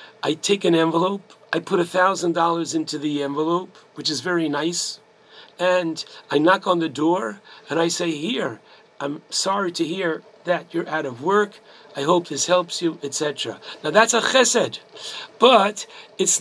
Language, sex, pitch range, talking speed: English, male, 165-200 Hz, 170 wpm